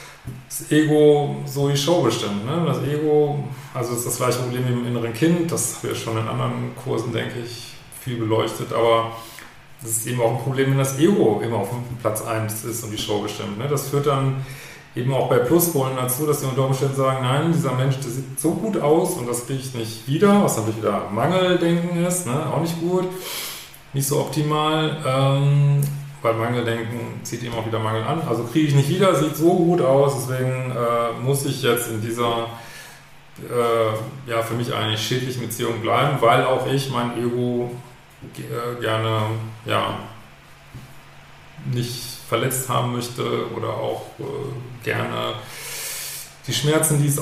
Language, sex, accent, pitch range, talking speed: German, male, German, 115-145 Hz, 180 wpm